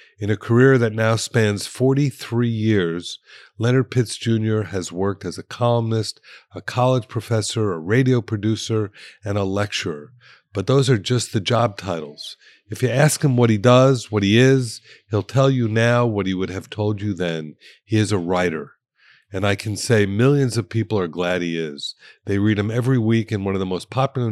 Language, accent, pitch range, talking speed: English, American, 95-115 Hz, 195 wpm